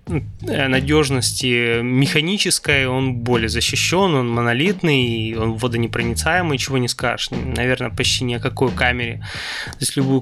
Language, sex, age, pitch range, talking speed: Russian, male, 20-39, 120-140 Hz, 125 wpm